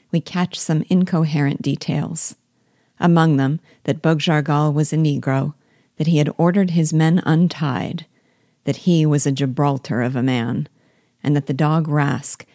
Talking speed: 155 wpm